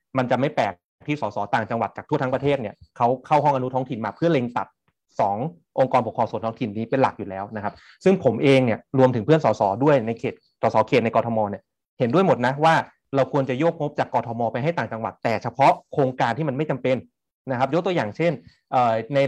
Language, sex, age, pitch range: Thai, male, 30-49, 115-145 Hz